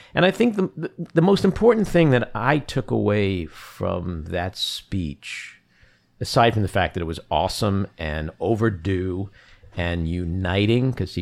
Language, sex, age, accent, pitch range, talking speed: English, male, 50-69, American, 95-130 Hz, 150 wpm